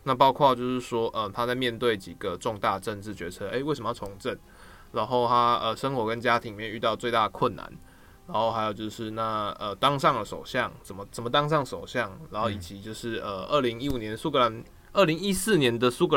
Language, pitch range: Chinese, 110-135 Hz